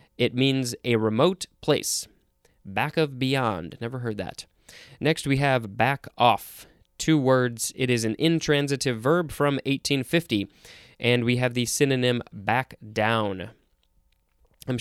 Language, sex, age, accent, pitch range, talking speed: English, male, 20-39, American, 115-145 Hz, 135 wpm